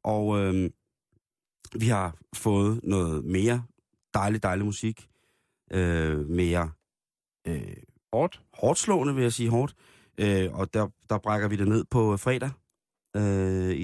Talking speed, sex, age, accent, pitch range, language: 135 wpm, male, 30-49, native, 100-120 Hz, Danish